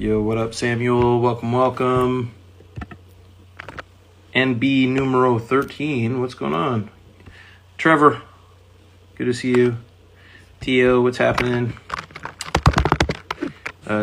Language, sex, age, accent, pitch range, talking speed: English, male, 30-49, American, 95-125 Hz, 90 wpm